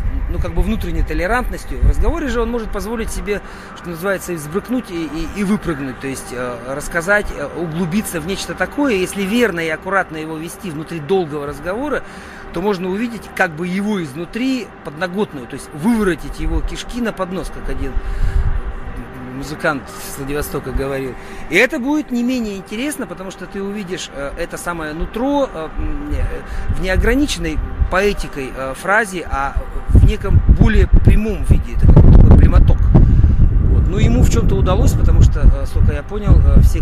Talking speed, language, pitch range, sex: 155 wpm, Russian, 130-200 Hz, male